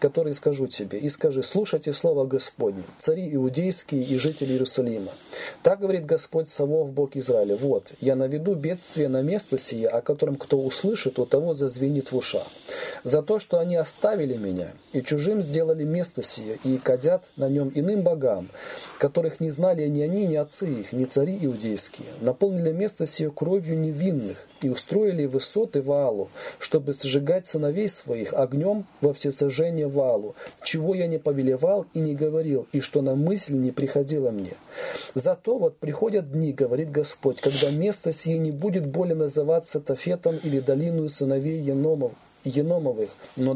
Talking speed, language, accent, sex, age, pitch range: 155 wpm, Russian, native, male, 40-59, 140-180 Hz